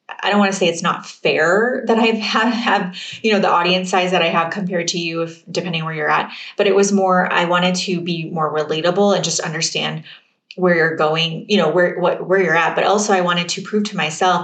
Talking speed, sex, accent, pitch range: 245 wpm, female, American, 165-195 Hz